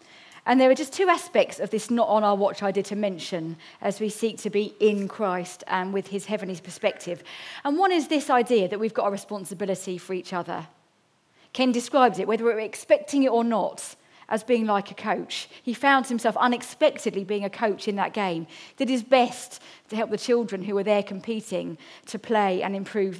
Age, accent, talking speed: 40-59, British, 205 wpm